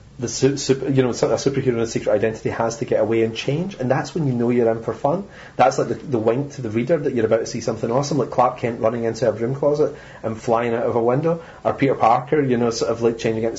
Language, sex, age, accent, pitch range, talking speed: English, male, 30-49, British, 115-140 Hz, 285 wpm